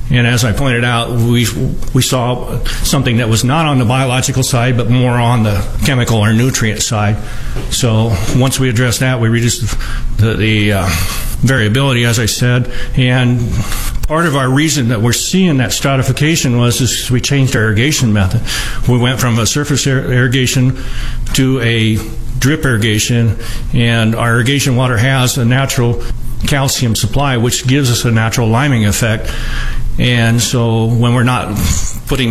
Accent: American